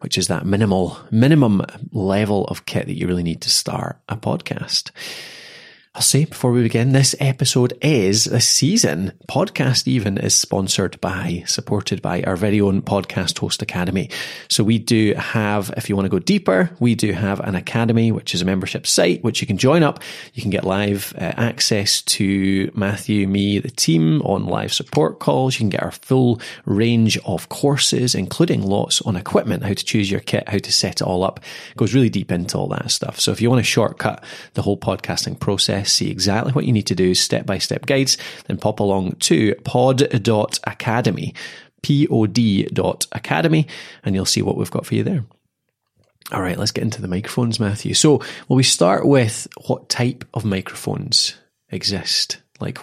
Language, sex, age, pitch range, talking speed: English, male, 30-49, 100-130 Hz, 185 wpm